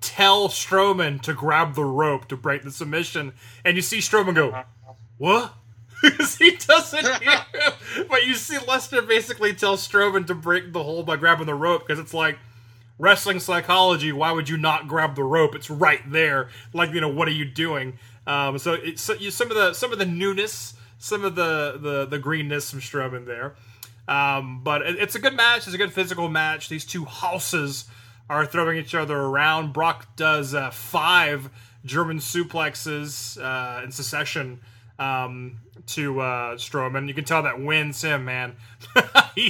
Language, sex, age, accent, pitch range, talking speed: English, male, 30-49, American, 130-175 Hz, 180 wpm